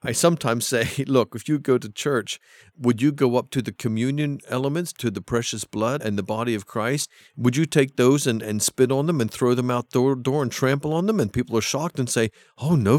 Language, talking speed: English, 245 wpm